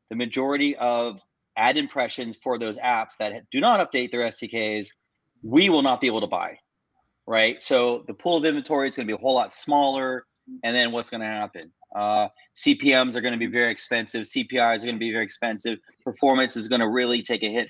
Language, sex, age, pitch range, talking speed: English, male, 30-49, 115-130 Hz, 200 wpm